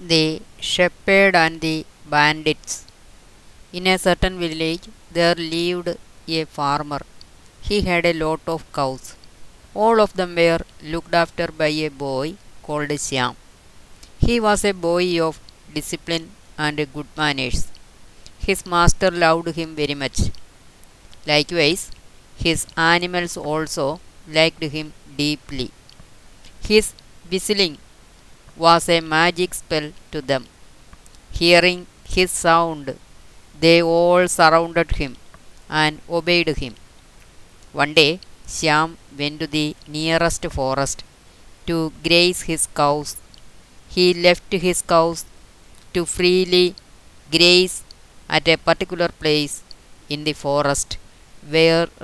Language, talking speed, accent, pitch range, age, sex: Malayalam, 115 wpm, native, 150-175 Hz, 20-39, female